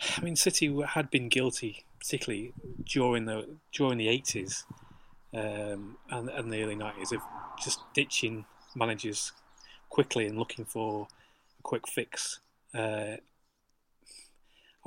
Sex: male